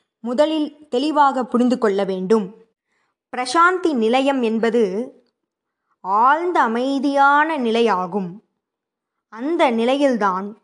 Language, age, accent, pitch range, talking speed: Tamil, 20-39, native, 210-270 Hz, 75 wpm